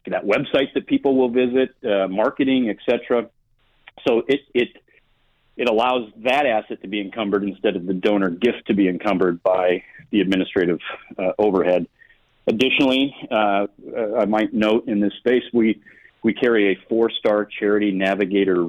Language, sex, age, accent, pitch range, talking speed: English, male, 40-59, American, 95-115 Hz, 155 wpm